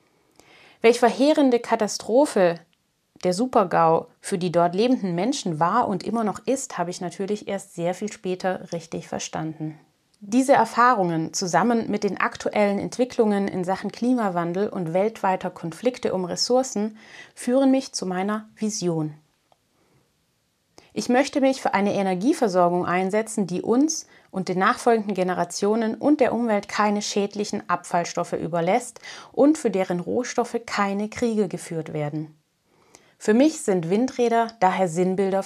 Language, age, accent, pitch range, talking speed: German, 30-49, German, 180-235 Hz, 130 wpm